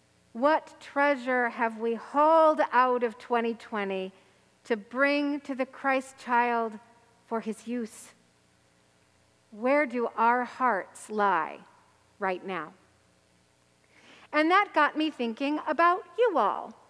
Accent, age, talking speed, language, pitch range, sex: American, 50-69, 115 wpm, English, 210-285 Hz, female